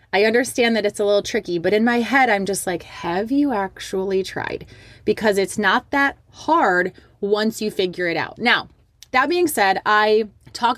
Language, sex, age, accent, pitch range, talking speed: English, female, 20-39, American, 170-210 Hz, 190 wpm